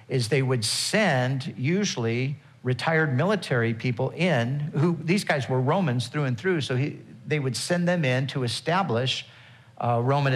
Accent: American